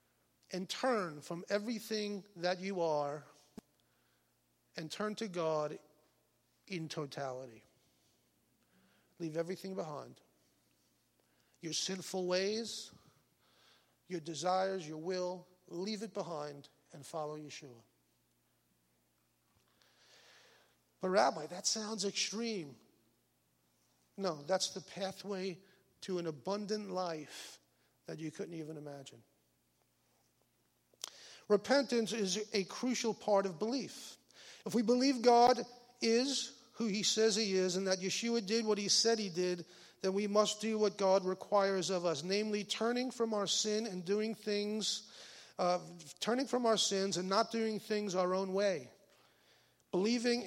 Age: 50-69